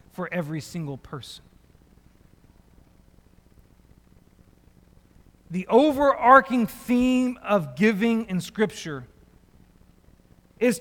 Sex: male